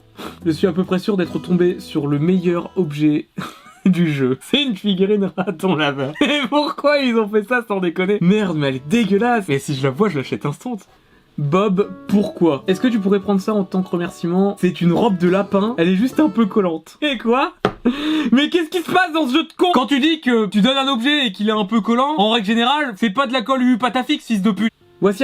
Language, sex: French, male